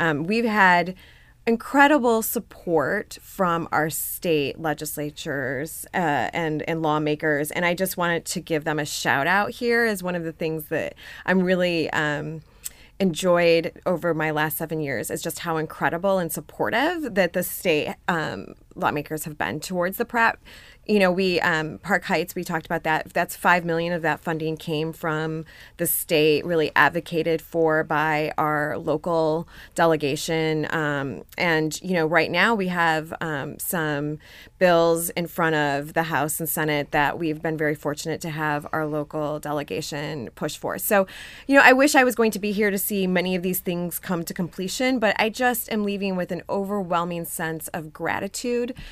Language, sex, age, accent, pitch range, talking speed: English, female, 20-39, American, 155-190 Hz, 175 wpm